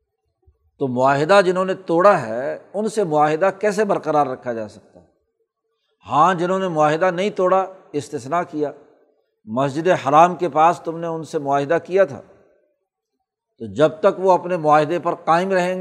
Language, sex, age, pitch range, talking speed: Urdu, male, 60-79, 150-190 Hz, 160 wpm